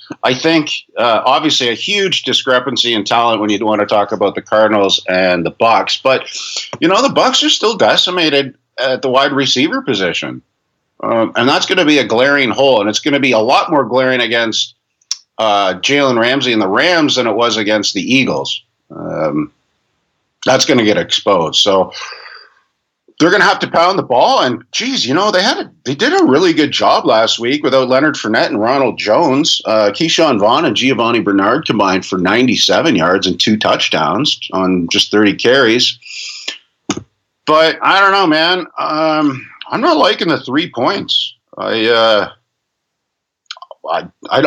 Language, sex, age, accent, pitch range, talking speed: English, male, 50-69, American, 110-140 Hz, 175 wpm